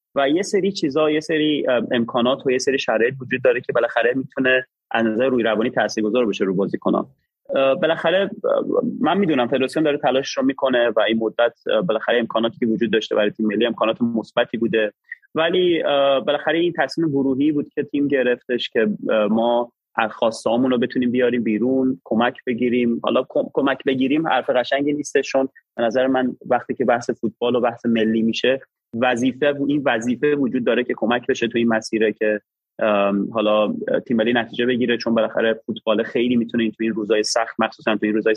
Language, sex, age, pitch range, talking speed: Persian, male, 30-49, 110-140 Hz, 170 wpm